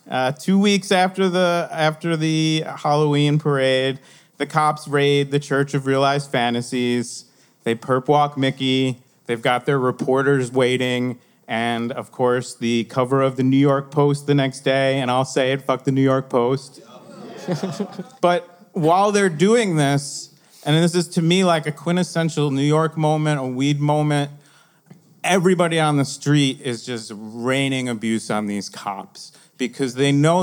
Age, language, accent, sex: 30-49, English, American, male